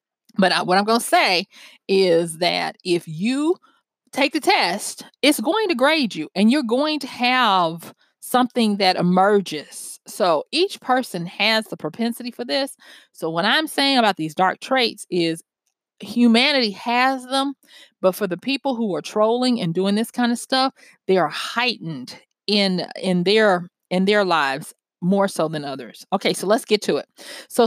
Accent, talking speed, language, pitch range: American, 170 wpm, English, 185-250 Hz